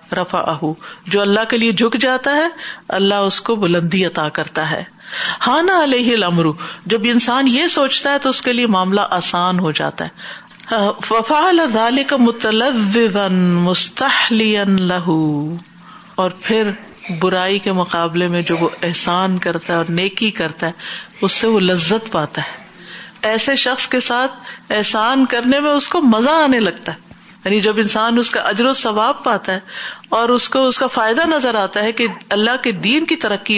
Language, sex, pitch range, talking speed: Urdu, female, 185-250 Hz, 170 wpm